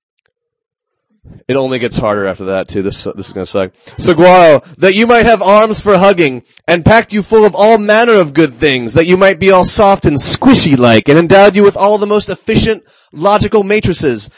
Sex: male